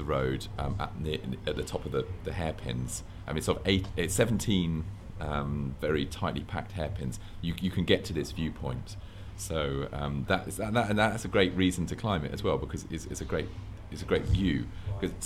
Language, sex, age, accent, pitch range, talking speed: English, male, 40-59, British, 80-100 Hz, 220 wpm